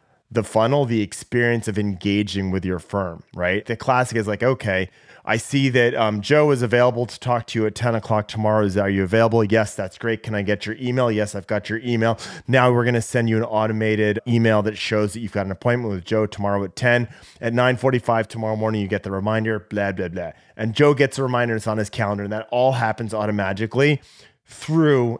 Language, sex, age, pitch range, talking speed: English, male, 30-49, 100-120 Hz, 225 wpm